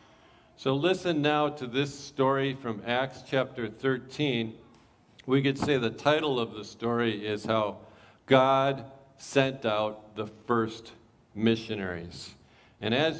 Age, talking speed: 50-69, 125 wpm